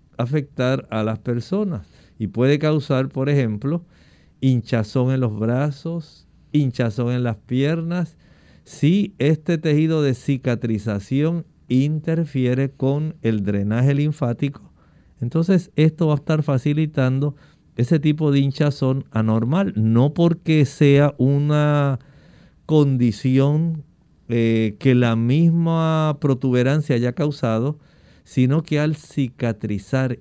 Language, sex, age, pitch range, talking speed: Spanish, male, 50-69, 115-150 Hz, 105 wpm